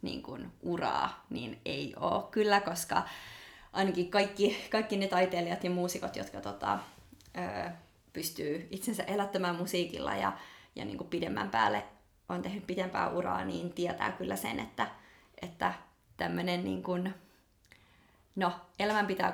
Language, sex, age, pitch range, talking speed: Finnish, female, 20-39, 175-200 Hz, 110 wpm